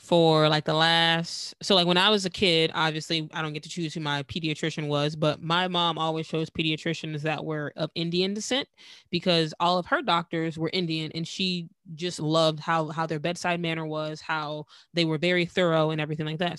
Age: 20-39